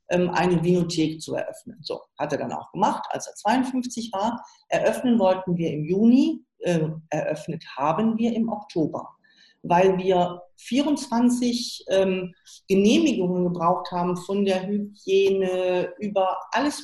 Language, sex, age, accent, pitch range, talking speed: German, female, 40-59, German, 175-220 Hz, 125 wpm